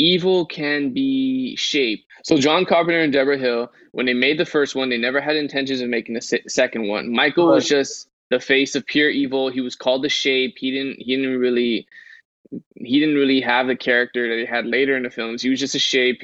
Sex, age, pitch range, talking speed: male, 20-39, 120-145 Hz, 225 wpm